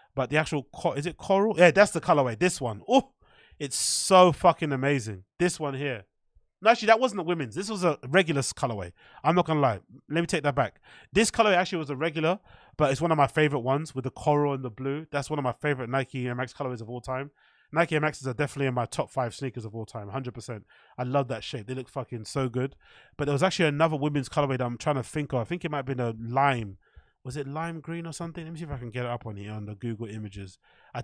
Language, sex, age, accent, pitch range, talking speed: English, male, 20-39, British, 130-160 Hz, 255 wpm